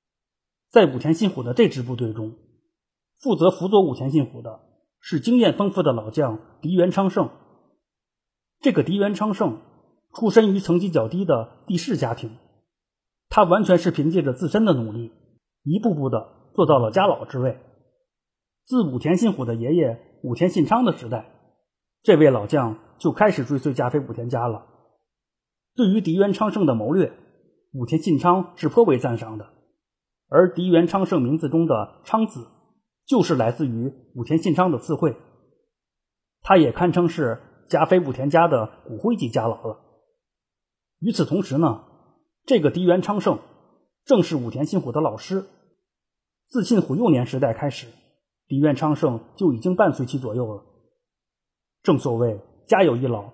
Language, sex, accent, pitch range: Chinese, male, native, 125-185 Hz